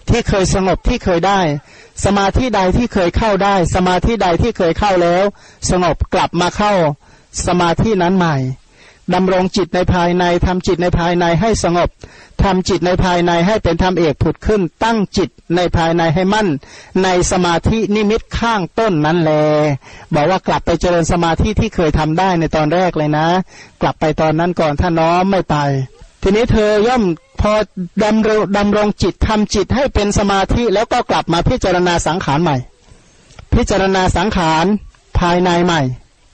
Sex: male